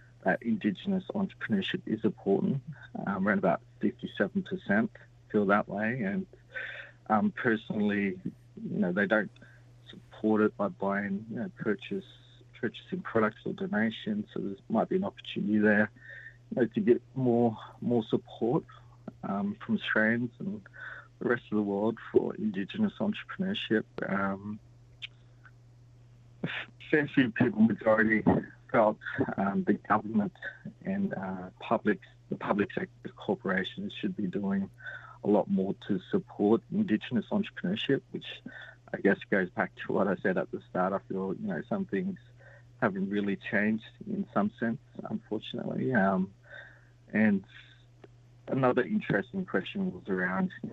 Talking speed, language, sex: 135 wpm, English, male